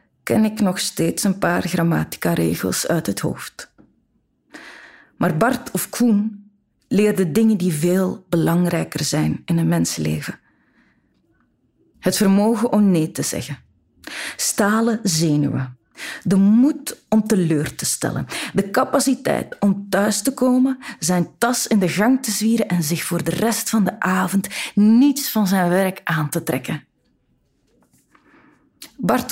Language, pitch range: Dutch, 160-215 Hz